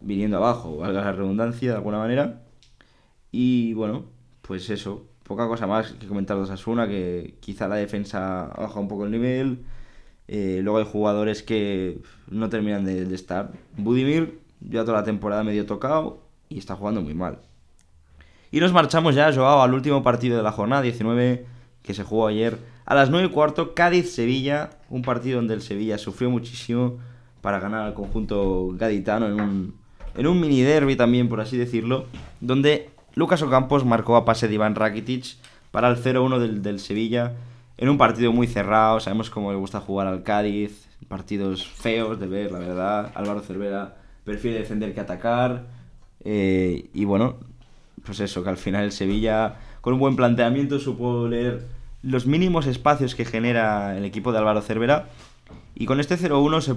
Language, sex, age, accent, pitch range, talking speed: Spanish, male, 20-39, Spanish, 100-125 Hz, 175 wpm